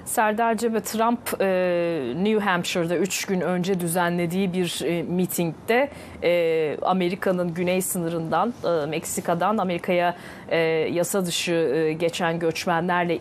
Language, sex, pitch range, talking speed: Turkish, female, 170-195 Hz, 90 wpm